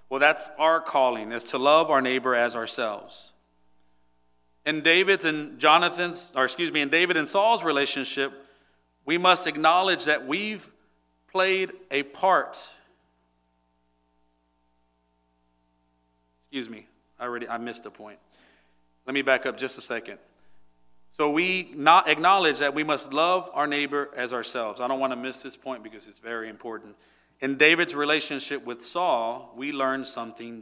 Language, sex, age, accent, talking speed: English, male, 40-59, American, 150 wpm